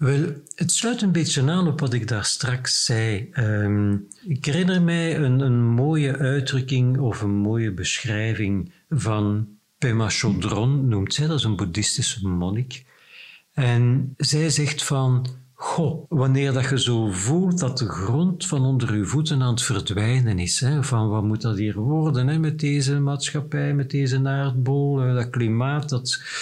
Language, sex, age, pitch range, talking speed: Dutch, male, 60-79, 120-150 Hz, 160 wpm